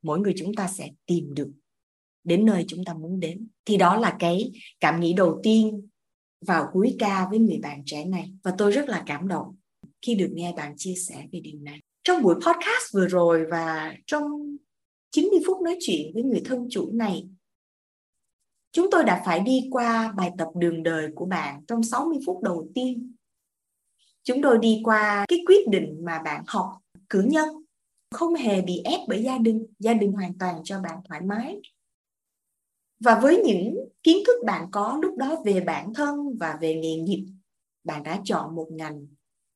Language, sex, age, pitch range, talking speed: Vietnamese, female, 20-39, 165-245 Hz, 190 wpm